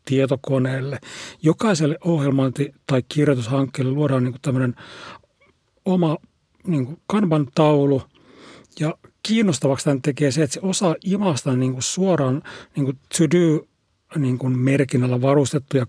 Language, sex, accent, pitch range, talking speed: Finnish, male, native, 135-165 Hz, 75 wpm